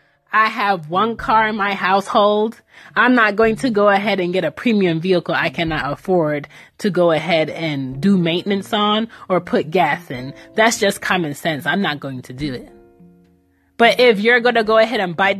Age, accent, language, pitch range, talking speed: 20-39, American, English, 175-225 Hz, 200 wpm